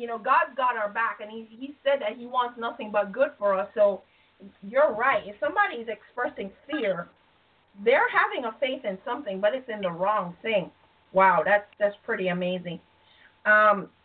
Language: English